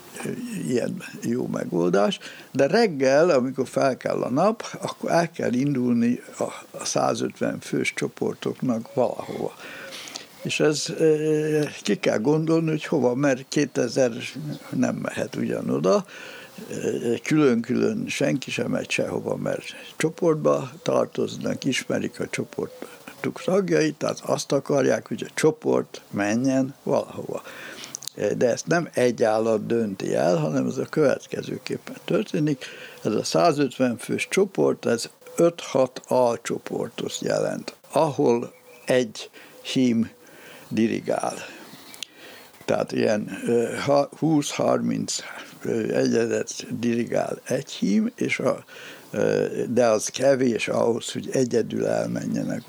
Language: Hungarian